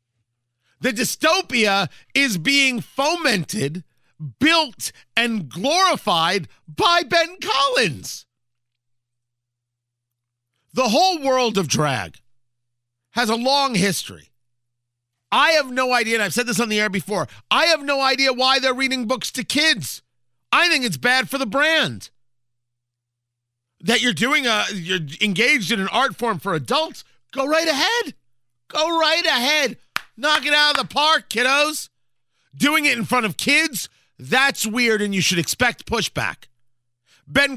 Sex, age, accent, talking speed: male, 50-69, American, 140 wpm